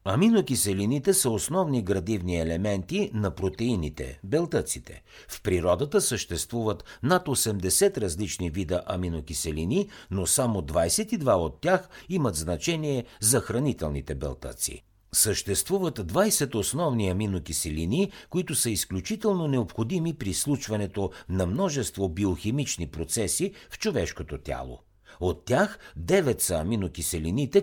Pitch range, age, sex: 90-145 Hz, 60-79, male